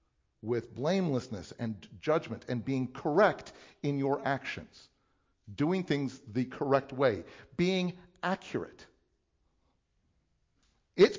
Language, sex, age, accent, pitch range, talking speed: English, male, 50-69, American, 125-175 Hz, 95 wpm